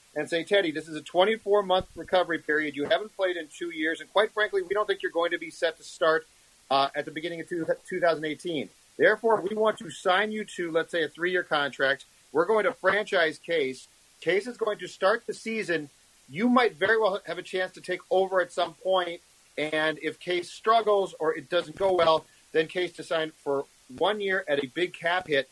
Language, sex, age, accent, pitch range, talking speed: English, male, 40-59, American, 150-185 Hz, 215 wpm